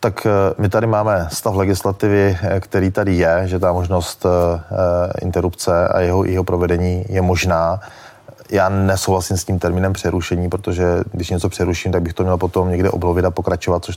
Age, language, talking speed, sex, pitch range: 30-49, Czech, 170 wpm, male, 90-95 Hz